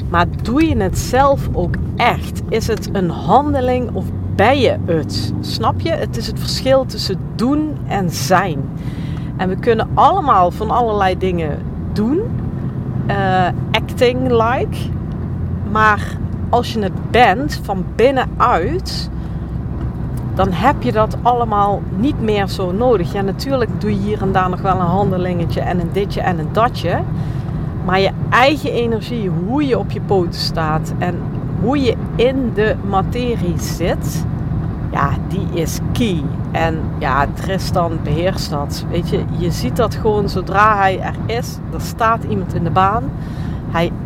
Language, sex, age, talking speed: Dutch, female, 40-59, 155 wpm